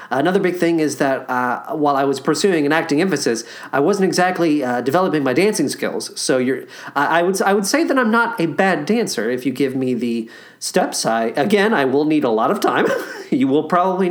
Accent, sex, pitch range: American, male, 130-180 Hz